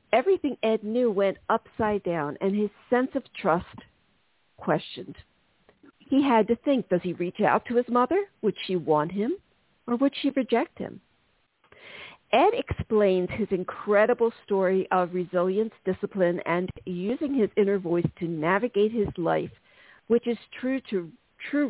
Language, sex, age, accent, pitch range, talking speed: English, female, 50-69, American, 180-235 Hz, 150 wpm